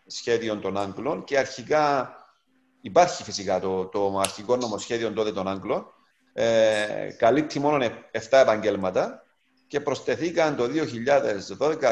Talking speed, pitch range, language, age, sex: 110 wpm, 110-155 Hz, Greek, 50-69, male